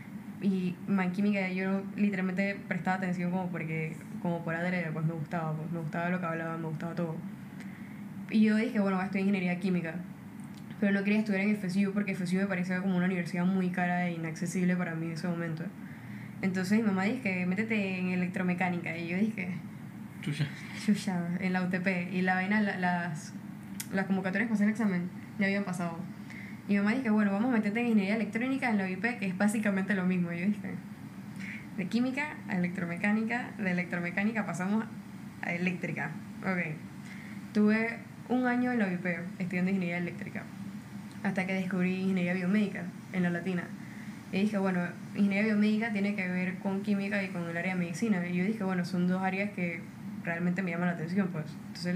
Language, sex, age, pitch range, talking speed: Spanish, female, 10-29, 180-205 Hz, 180 wpm